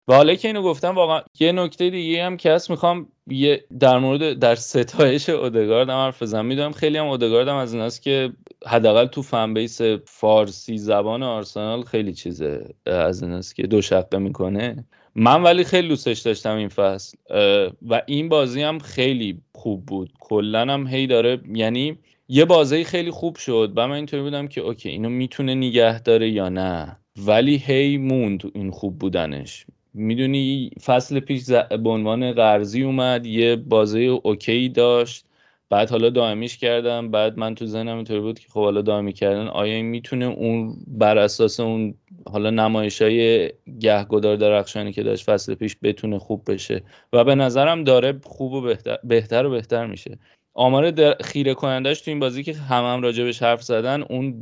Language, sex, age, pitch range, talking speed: English, male, 20-39, 110-135 Hz, 170 wpm